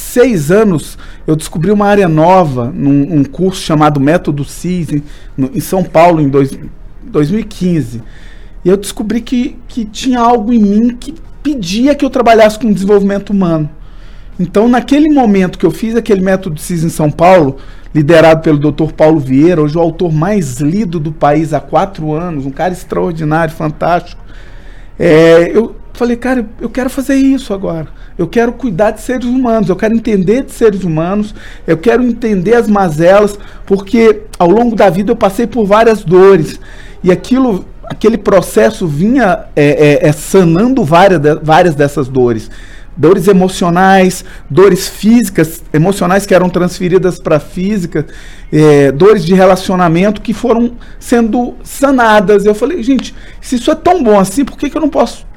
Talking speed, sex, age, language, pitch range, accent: 160 wpm, male, 40-59, English, 165-235 Hz, Brazilian